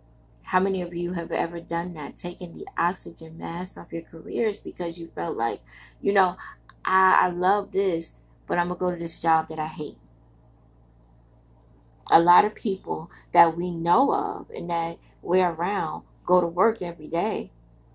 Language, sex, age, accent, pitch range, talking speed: English, female, 20-39, American, 155-190 Hz, 175 wpm